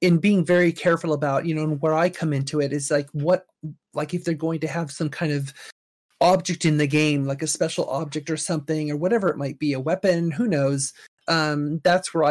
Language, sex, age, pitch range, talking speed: English, male, 30-49, 150-180 Hz, 230 wpm